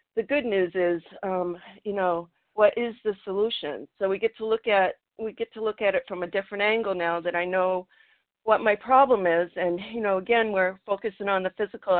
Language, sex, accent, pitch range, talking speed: English, female, American, 180-220 Hz, 220 wpm